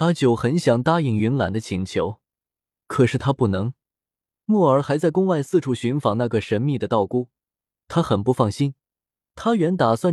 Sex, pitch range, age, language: male, 105-160 Hz, 20-39, Chinese